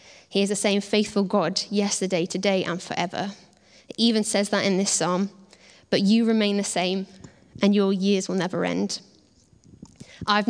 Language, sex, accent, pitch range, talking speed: English, female, British, 195-220 Hz, 165 wpm